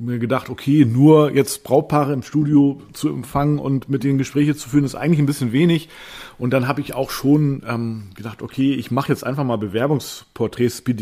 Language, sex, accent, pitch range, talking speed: German, male, German, 125-155 Hz, 200 wpm